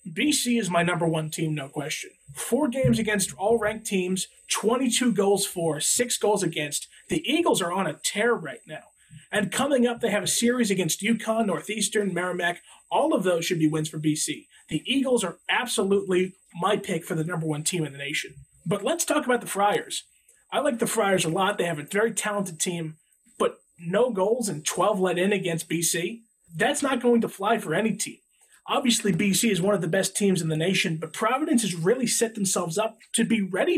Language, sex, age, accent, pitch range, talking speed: English, male, 30-49, American, 170-225 Hz, 210 wpm